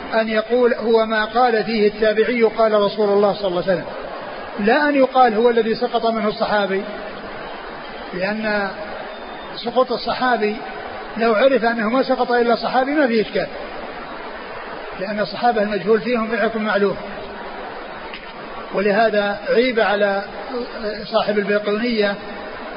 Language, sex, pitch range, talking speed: Arabic, male, 210-245 Hz, 120 wpm